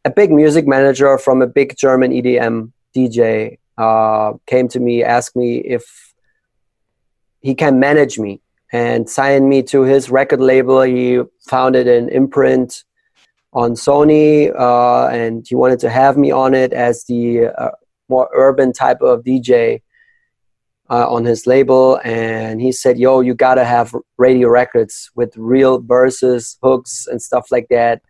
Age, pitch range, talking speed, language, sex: 30-49, 120-135 Hz, 155 wpm, English, male